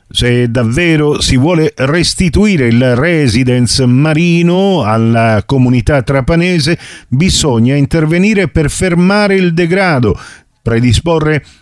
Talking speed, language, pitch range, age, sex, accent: 95 wpm, Italian, 125-170 Hz, 50-69, male, native